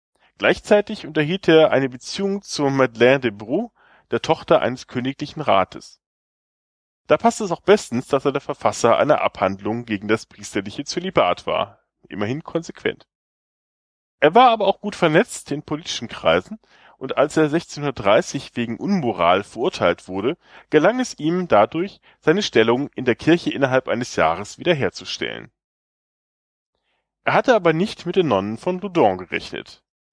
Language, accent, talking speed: German, German, 145 wpm